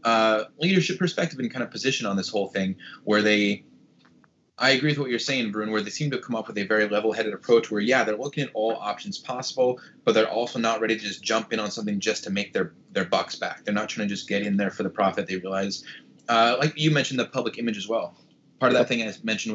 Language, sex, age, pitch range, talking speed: English, male, 20-39, 105-135 Hz, 260 wpm